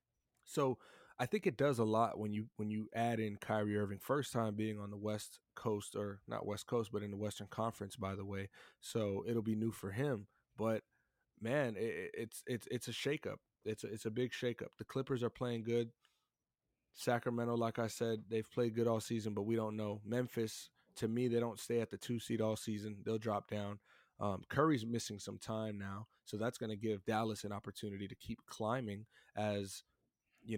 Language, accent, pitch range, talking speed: English, American, 105-120 Hz, 210 wpm